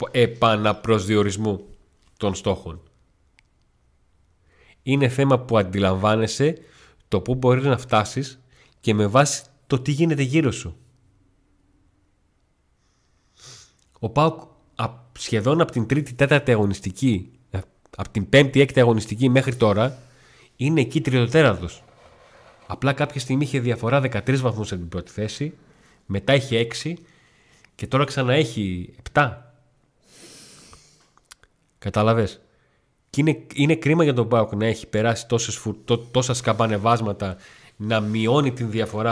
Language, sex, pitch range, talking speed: Greek, male, 105-135 Hz, 110 wpm